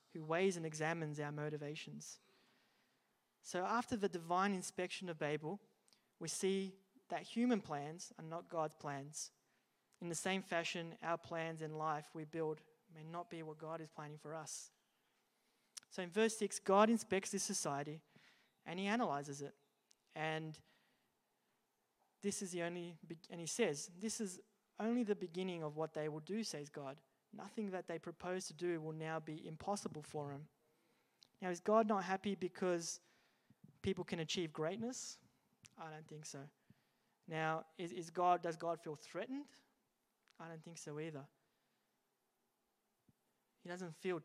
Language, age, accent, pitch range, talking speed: English, 20-39, Australian, 155-195 Hz, 155 wpm